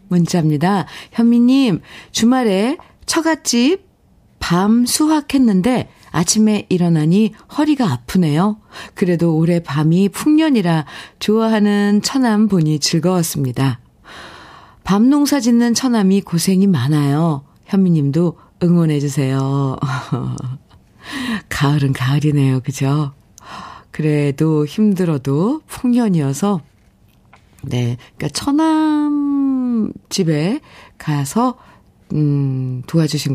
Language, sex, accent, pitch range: Korean, female, native, 140-210 Hz